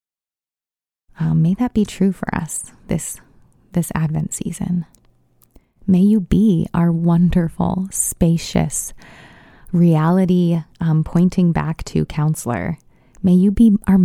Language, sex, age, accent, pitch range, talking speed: English, female, 20-39, American, 160-185 Hz, 115 wpm